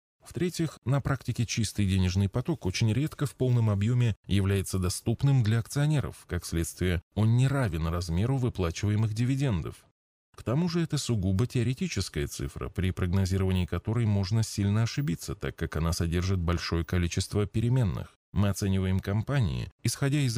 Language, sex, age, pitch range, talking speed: Russian, male, 20-39, 90-120 Hz, 140 wpm